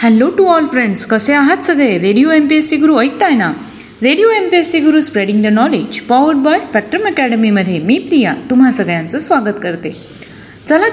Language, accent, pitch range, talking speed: Marathi, native, 215-290 Hz, 175 wpm